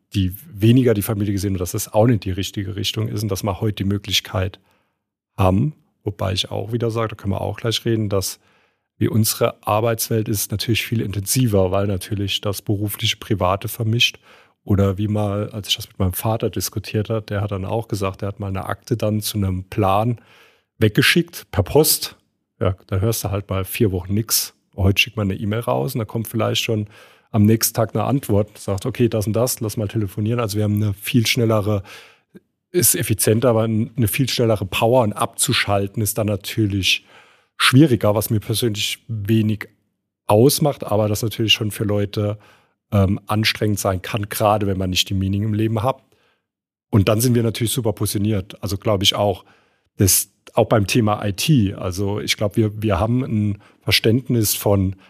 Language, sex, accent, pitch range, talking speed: German, male, German, 100-115 Hz, 190 wpm